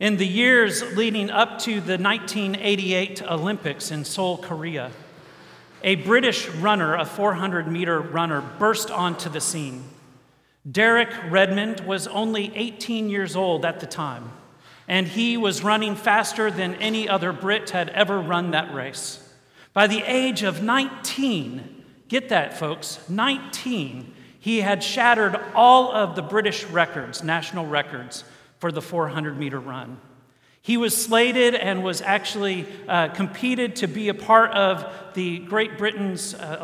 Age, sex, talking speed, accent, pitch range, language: 40-59, male, 140 wpm, American, 155-205 Hz, English